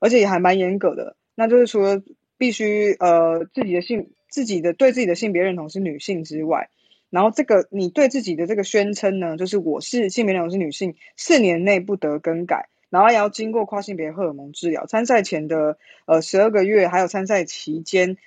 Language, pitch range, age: Chinese, 165-225 Hz, 20-39